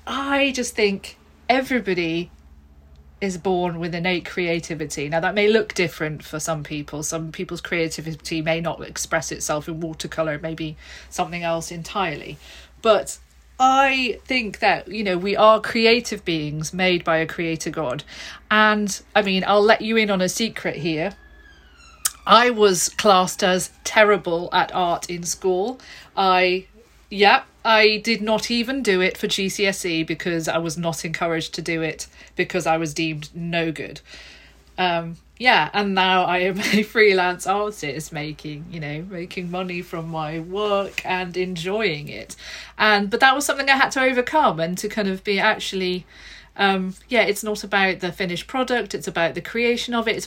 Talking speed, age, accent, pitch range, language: 165 wpm, 40-59, British, 165-210 Hz, English